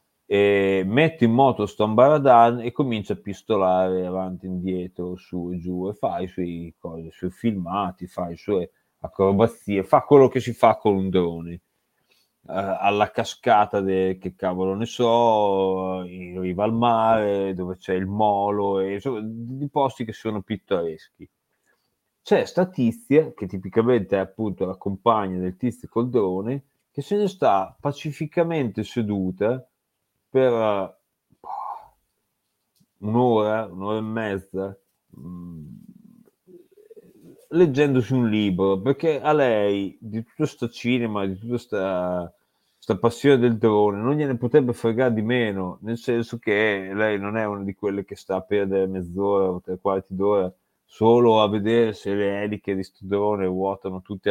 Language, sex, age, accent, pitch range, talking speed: Italian, male, 30-49, native, 95-120 Hz, 150 wpm